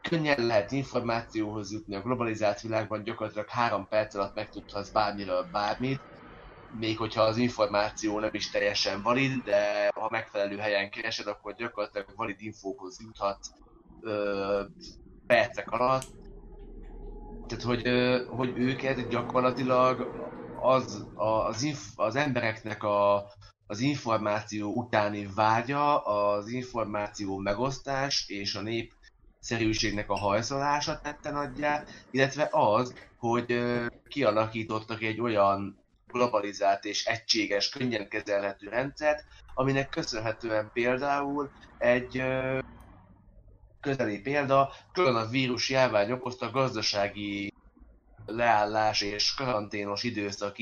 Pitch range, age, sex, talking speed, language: 105-125 Hz, 20-39, male, 105 wpm, Hungarian